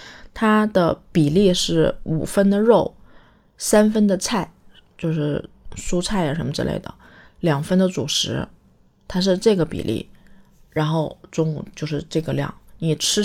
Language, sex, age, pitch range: Chinese, female, 20-39, 160-195 Hz